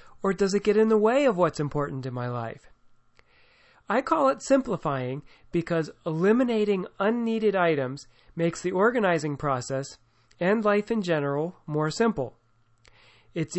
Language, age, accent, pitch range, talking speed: English, 40-59, American, 140-195 Hz, 140 wpm